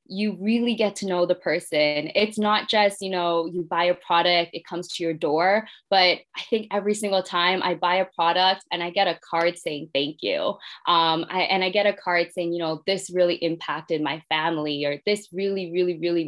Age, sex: 20-39, female